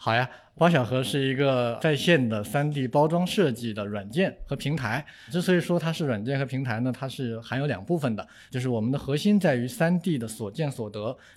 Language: Chinese